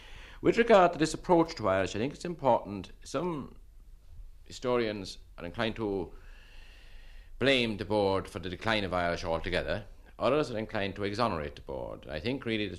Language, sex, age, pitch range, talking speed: English, male, 60-79, 80-110 Hz, 170 wpm